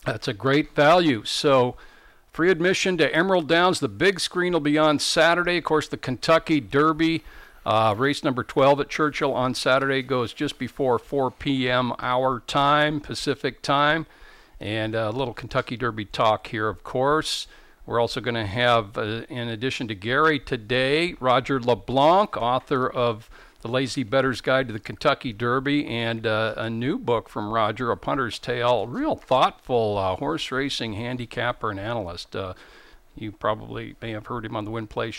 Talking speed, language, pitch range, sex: 170 wpm, English, 115-150 Hz, male